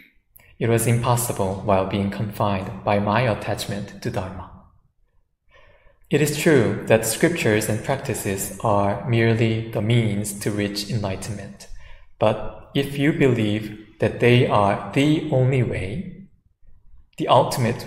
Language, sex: English, male